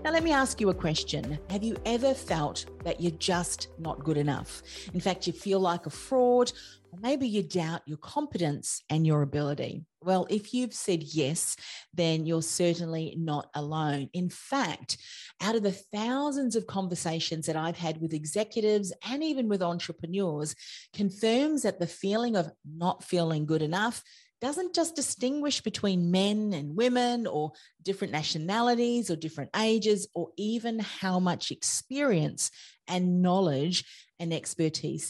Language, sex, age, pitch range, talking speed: English, female, 40-59, 160-220 Hz, 155 wpm